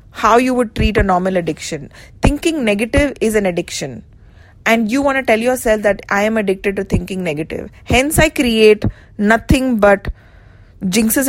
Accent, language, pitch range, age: Indian, English, 195-245 Hz, 20-39